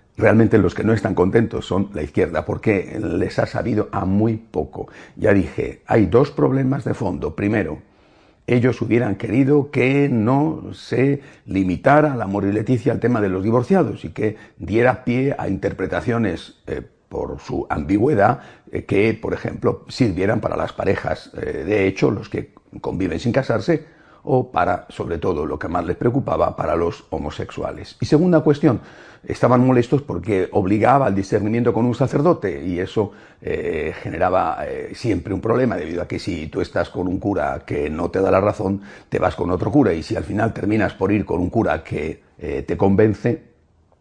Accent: Spanish